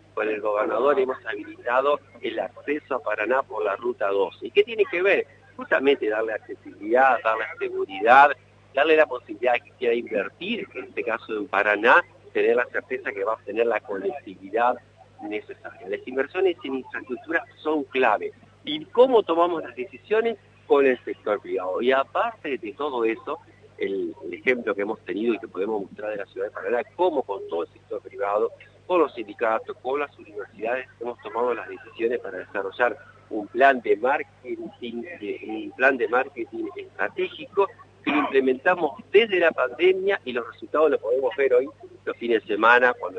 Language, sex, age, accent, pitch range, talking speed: Spanish, male, 40-59, Argentinian, 305-460 Hz, 170 wpm